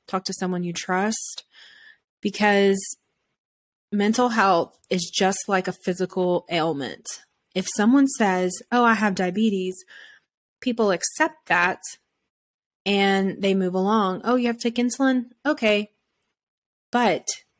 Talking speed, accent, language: 125 wpm, American, English